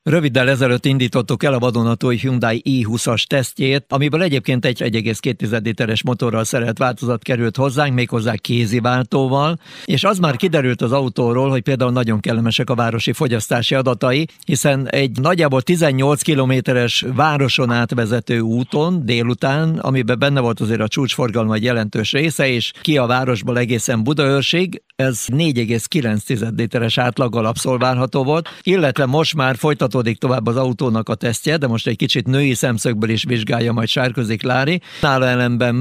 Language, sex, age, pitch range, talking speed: Hungarian, male, 60-79, 120-140 Hz, 145 wpm